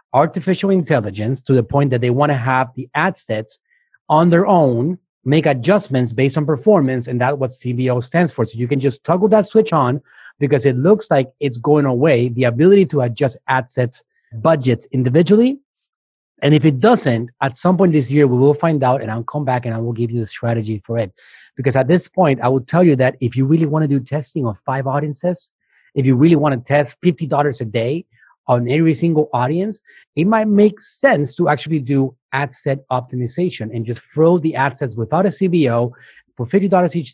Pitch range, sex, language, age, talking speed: 125-165 Hz, male, English, 30-49, 210 wpm